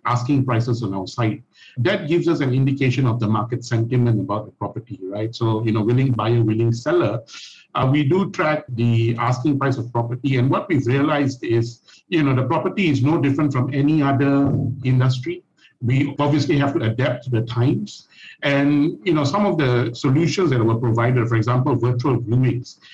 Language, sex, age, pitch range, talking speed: English, male, 50-69, 120-150 Hz, 190 wpm